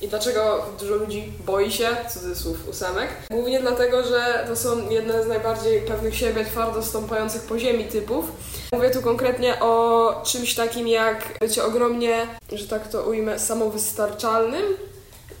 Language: Polish